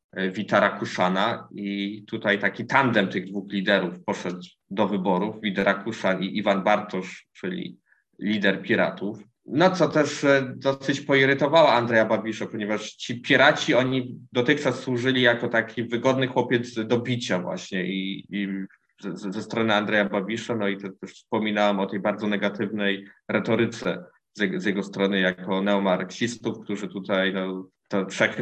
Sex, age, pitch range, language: male, 20-39, 100-130 Hz, Polish